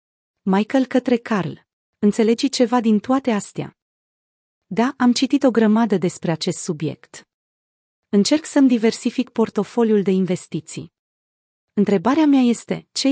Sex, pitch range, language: female, 180-235 Hz, Romanian